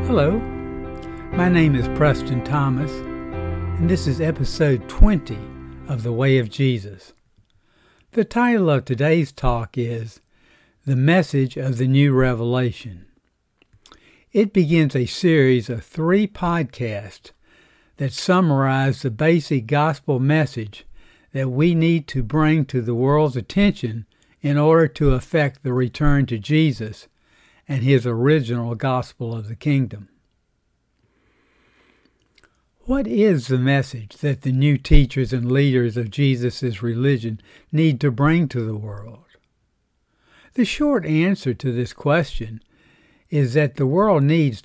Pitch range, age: 120-150 Hz, 60-79